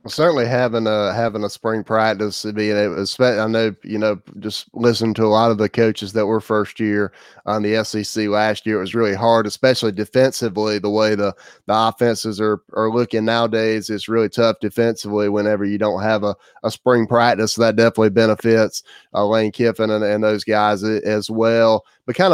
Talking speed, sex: 200 wpm, male